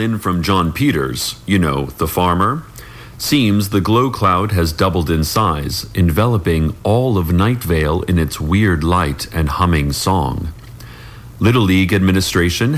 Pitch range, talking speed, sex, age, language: 90-120 Hz, 140 wpm, male, 40-59, English